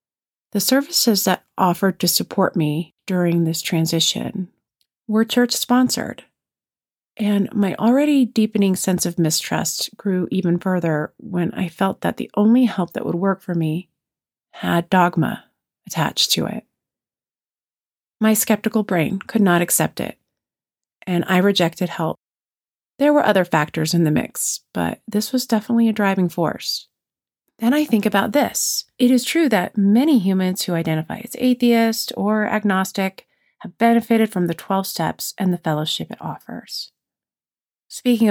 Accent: American